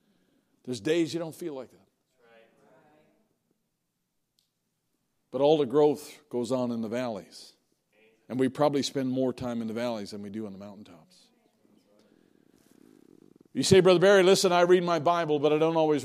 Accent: American